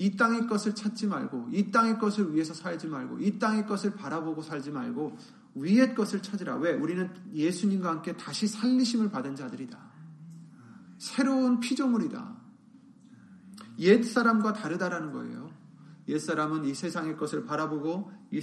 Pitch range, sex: 175-230 Hz, male